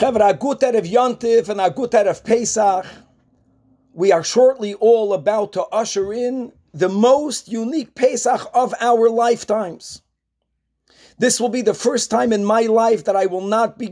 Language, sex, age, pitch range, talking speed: English, male, 40-59, 185-225 Hz, 125 wpm